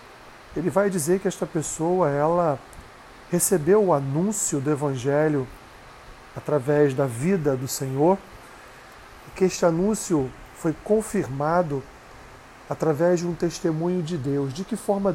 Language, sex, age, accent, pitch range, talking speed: Portuguese, male, 40-59, Brazilian, 140-170 Hz, 125 wpm